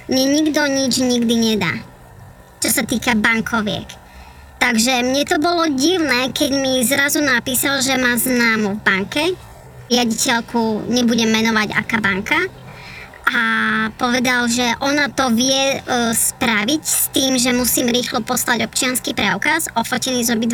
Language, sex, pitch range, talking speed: Slovak, male, 230-270 Hz, 135 wpm